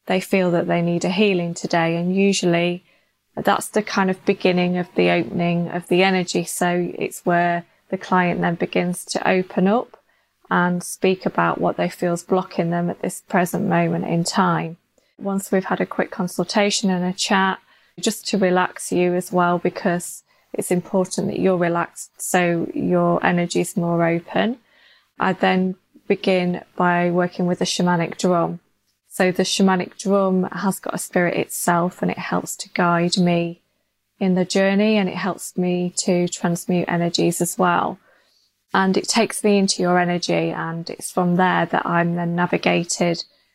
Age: 20-39